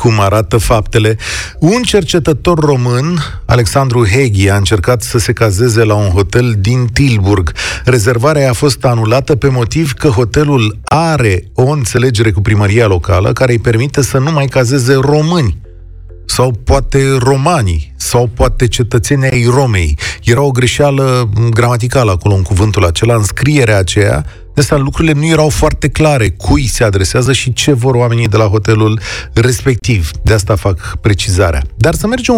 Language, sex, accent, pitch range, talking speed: Romanian, male, native, 105-145 Hz, 150 wpm